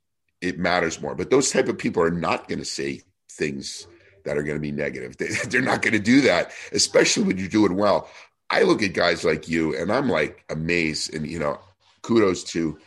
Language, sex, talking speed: English, male, 215 wpm